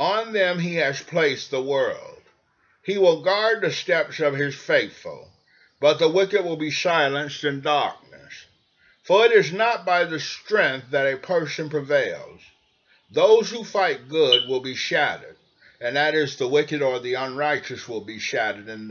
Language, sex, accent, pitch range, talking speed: English, male, American, 130-185 Hz, 165 wpm